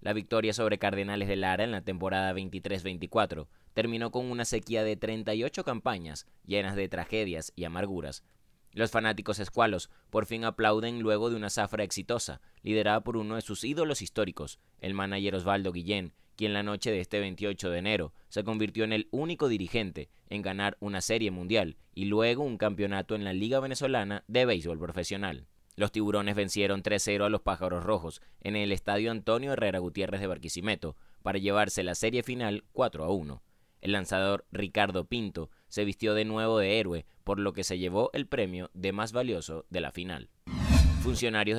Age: 20-39